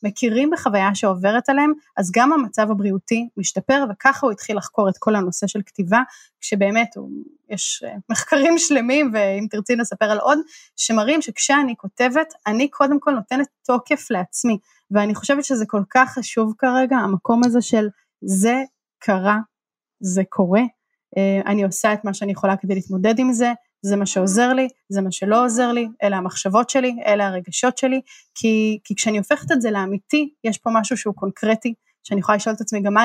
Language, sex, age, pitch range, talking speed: Hebrew, female, 20-39, 205-255 Hz, 170 wpm